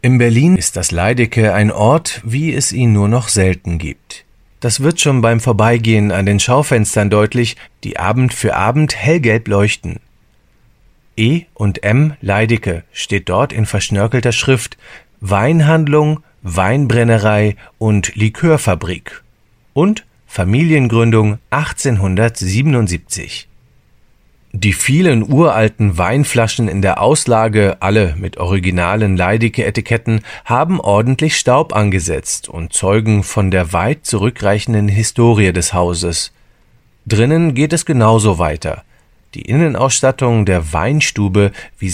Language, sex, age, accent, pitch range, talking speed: German, male, 40-59, German, 100-130 Hz, 115 wpm